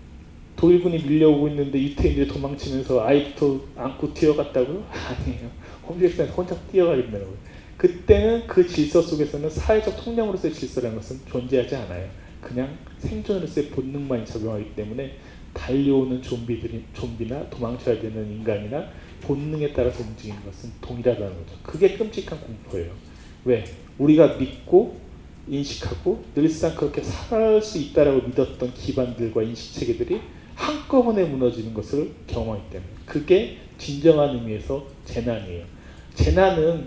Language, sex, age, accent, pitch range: Korean, male, 30-49, native, 115-160 Hz